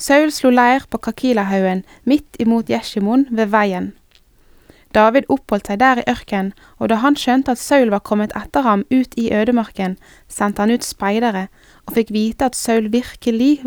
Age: 20-39